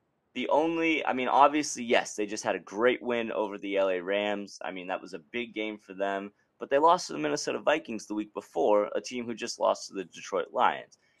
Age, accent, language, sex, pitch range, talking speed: 20-39, American, English, male, 105-140 Hz, 235 wpm